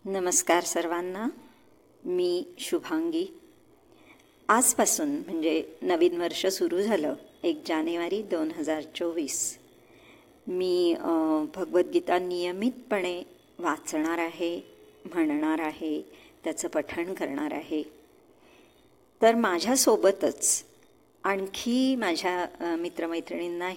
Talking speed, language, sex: 55 wpm, Marathi, male